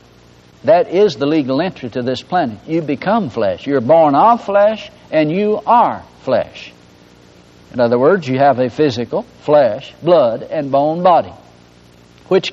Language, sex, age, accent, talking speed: English, male, 60-79, American, 155 wpm